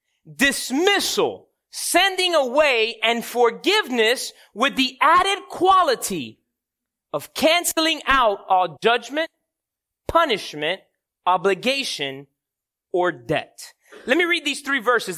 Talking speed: 95 wpm